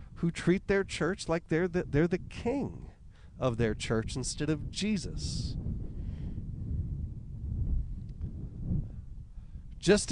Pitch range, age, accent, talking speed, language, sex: 135-205 Hz, 40-59, American, 100 wpm, English, male